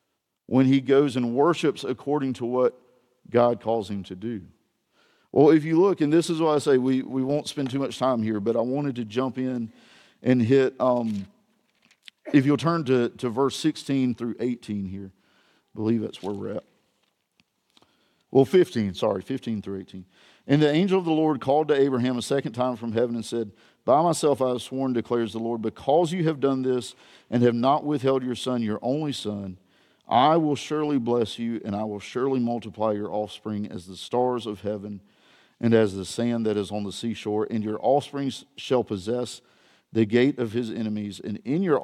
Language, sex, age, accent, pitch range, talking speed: English, male, 50-69, American, 105-135 Hz, 200 wpm